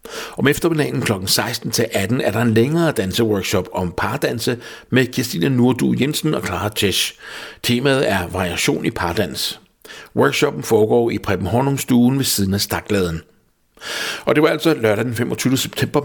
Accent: Danish